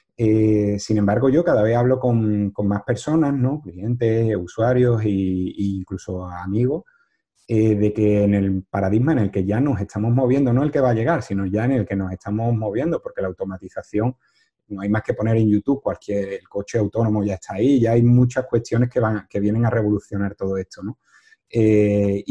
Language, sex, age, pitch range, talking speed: Spanish, male, 30-49, 100-120 Hz, 200 wpm